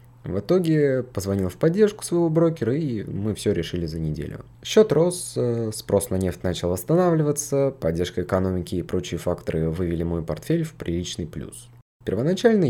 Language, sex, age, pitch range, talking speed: Russian, male, 20-39, 100-145 Hz, 150 wpm